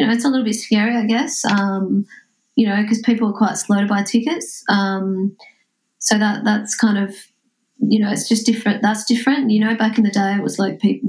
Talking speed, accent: 235 wpm, Australian